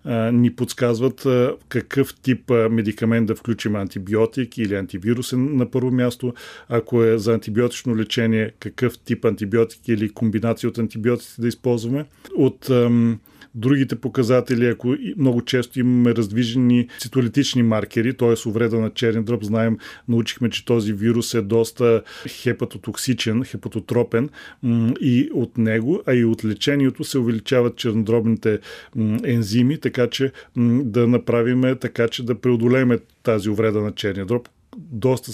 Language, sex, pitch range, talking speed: Bulgarian, male, 115-130 Hz, 130 wpm